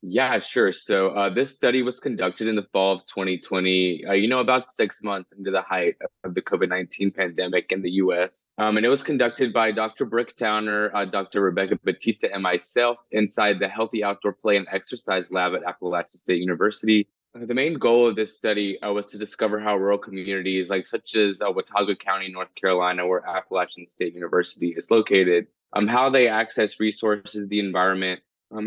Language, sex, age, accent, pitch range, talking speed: English, male, 20-39, American, 95-115 Hz, 190 wpm